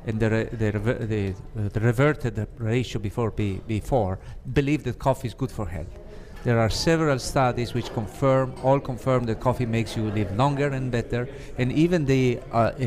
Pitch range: 110-135 Hz